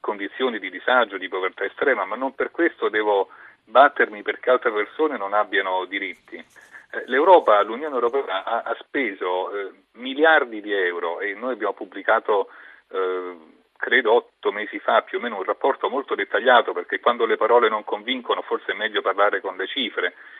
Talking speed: 160 wpm